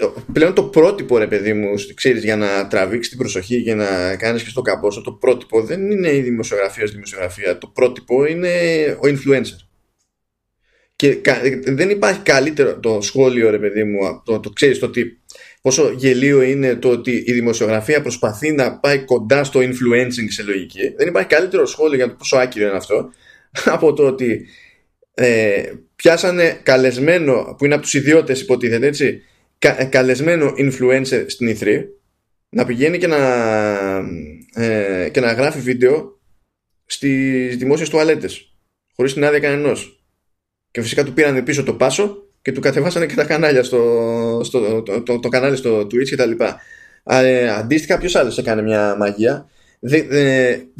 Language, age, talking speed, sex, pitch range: Greek, 20-39, 165 wpm, male, 115-145 Hz